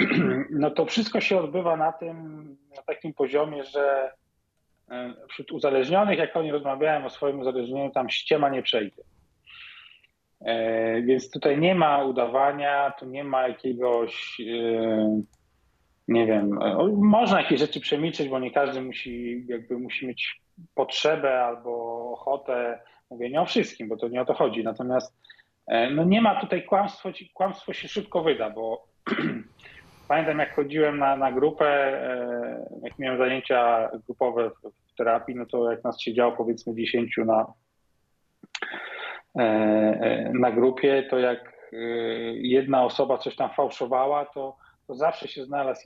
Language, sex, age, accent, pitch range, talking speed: Polish, male, 40-59, native, 120-150 Hz, 135 wpm